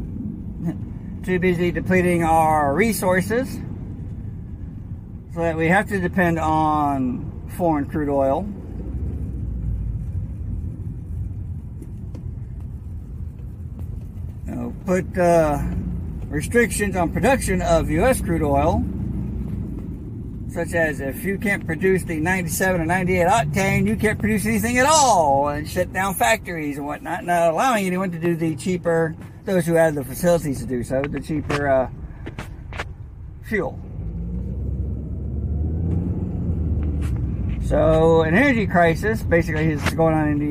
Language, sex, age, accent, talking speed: English, male, 60-79, American, 115 wpm